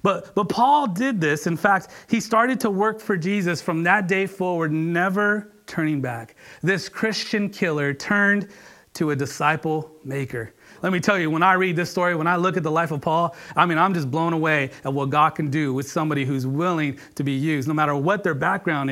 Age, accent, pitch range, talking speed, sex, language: 30-49, American, 150-195 Hz, 215 wpm, male, English